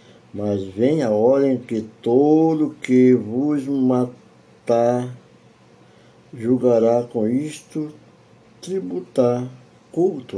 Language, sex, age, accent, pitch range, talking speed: Portuguese, male, 60-79, Brazilian, 100-130 Hz, 85 wpm